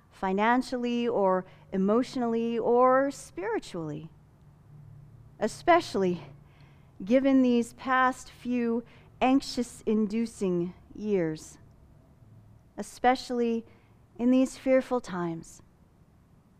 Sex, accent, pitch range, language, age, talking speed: female, American, 215-310 Hz, English, 30-49, 60 wpm